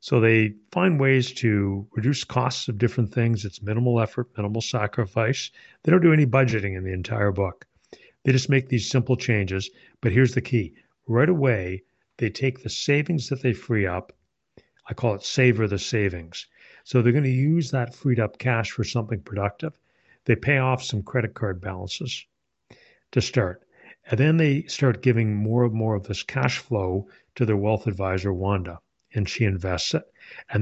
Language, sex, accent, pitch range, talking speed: English, male, American, 100-125 Hz, 180 wpm